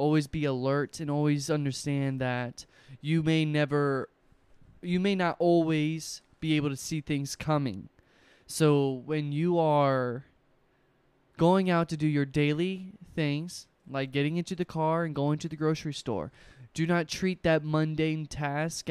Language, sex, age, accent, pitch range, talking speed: English, male, 20-39, American, 135-155 Hz, 150 wpm